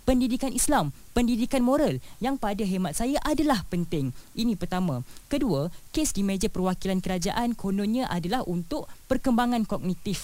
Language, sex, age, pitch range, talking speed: Malay, female, 20-39, 185-270 Hz, 135 wpm